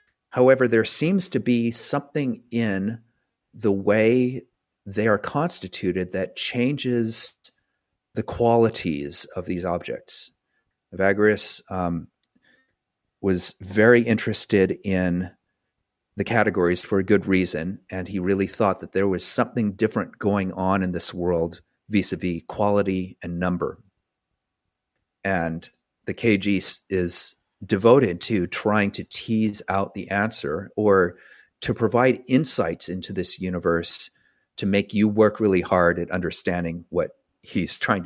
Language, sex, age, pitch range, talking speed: English, male, 40-59, 95-115 Hz, 125 wpm